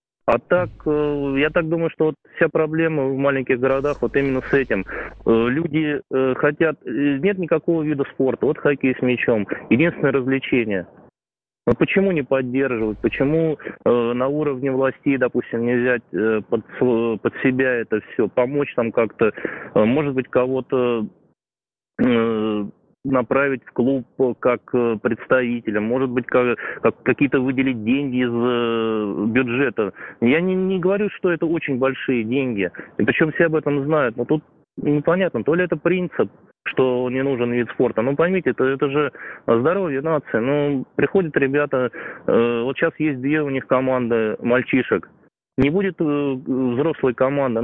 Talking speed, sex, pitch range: 140 wpm, male, 125-150 Hz